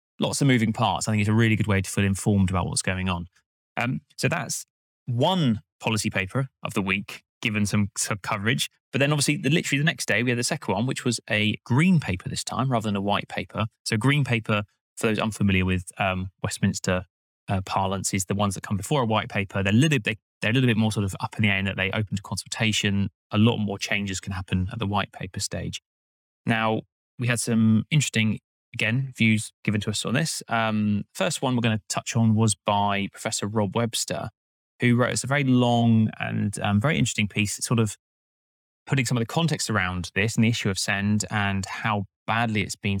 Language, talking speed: English, 220 wpm